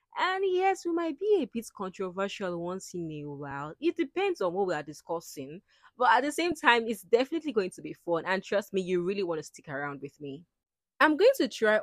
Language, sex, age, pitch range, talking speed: English, female, 20-39, 170-260 Hz, 230 wpm